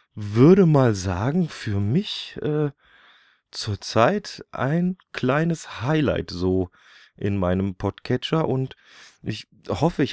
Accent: German